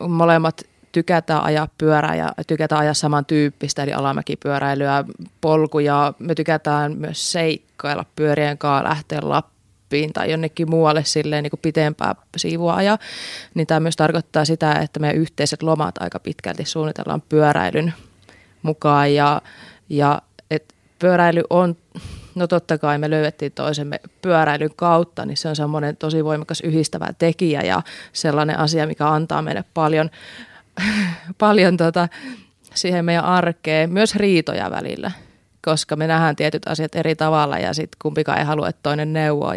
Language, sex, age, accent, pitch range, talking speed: Finnish, female, 20-39, native, 150-170 Hz, 140 wpm